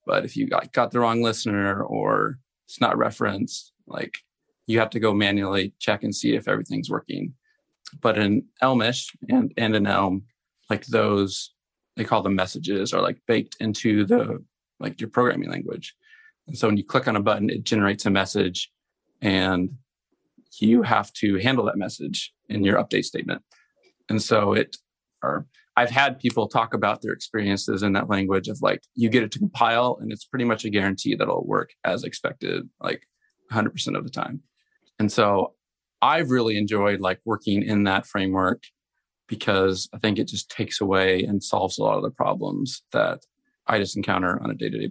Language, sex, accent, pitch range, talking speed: English, male, American, 100-125 Hz, 180 wpm